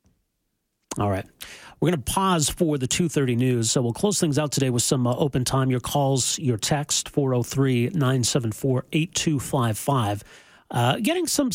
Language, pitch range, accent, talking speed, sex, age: English, 125-155 Hz, American, 150 wpm, male, 40-59